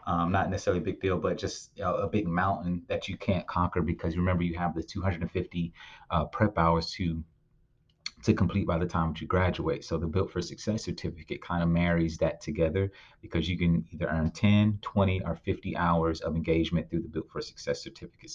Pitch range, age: 85-95 Hz, 30-49